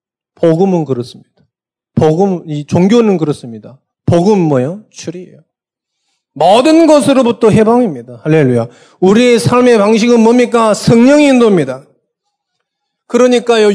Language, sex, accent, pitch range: Korean, male, native, 175-245 Hz